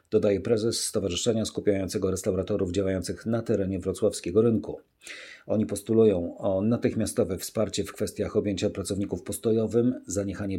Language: Polish